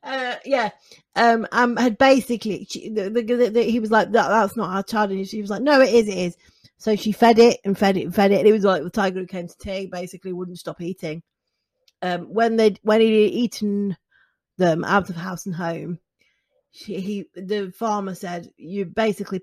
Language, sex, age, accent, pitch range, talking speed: English, female, 40-59, British, 175-230 Hz, 200 wpm